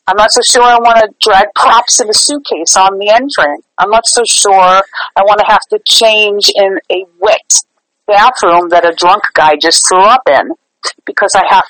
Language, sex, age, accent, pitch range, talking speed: English, female, 40-59, American, 190-280 Hz, 210 wpm